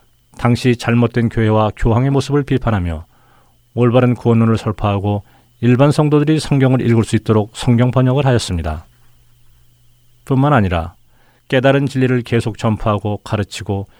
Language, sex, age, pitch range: Korean, male, 40-59, 95-130 Hz